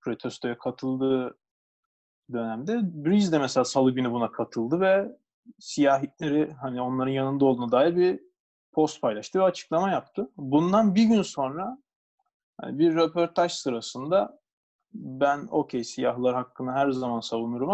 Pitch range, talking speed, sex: 130-180 Hz, 125 wpm, male